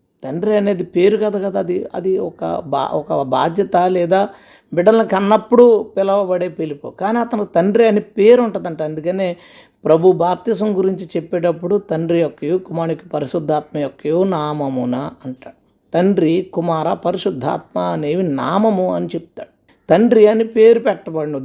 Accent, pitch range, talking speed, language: native, 160-215 Hz, 130 wpm, Telugu